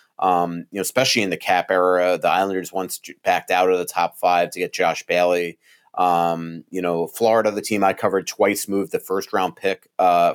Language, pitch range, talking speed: English, 90-110 Hz, 210 wpm